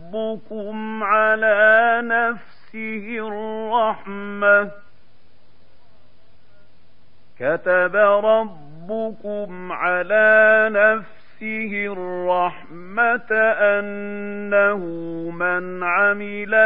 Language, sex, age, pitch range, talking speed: Arabic, male, 50-69, 185-220 Hz, 45 wpm